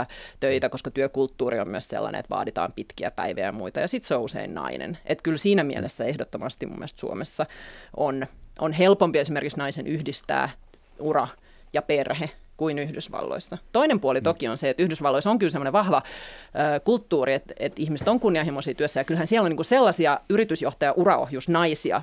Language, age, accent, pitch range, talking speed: Finnish, 30-49, native, 145-180 Hz, 170 wpm